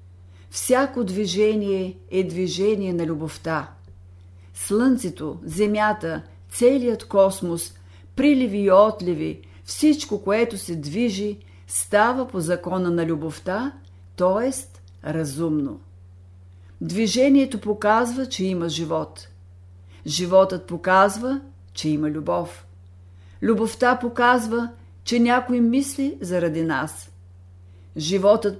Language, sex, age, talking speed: Bulgarian, female, 50-69, 90 wpm